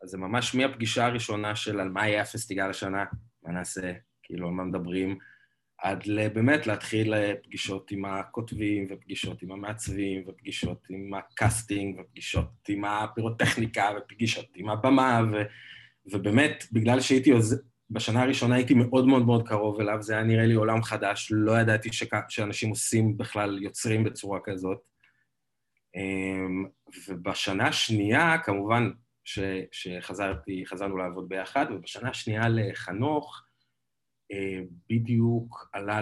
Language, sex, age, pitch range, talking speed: Hebrew, male, 20-39, 95-115 Hz, 125 wpm